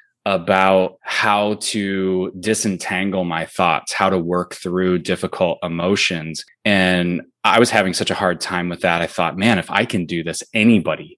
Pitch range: 90-105 Hz